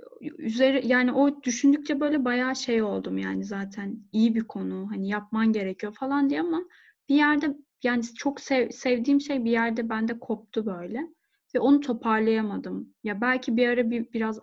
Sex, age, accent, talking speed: female, 10-29, native, 165 wpm